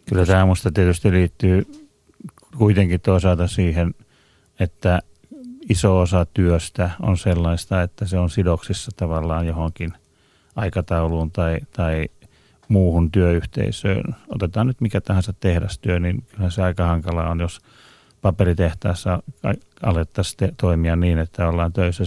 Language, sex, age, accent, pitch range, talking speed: Finnish, male, 30-49, native, 90-100 Hz, 120 wpm